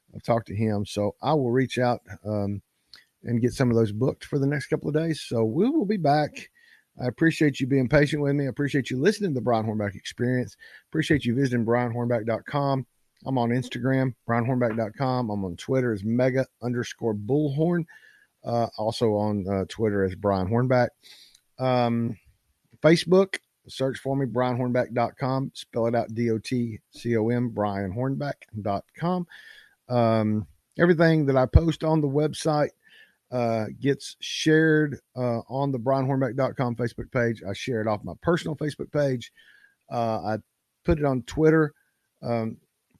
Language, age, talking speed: English, 50-69, 150 wpm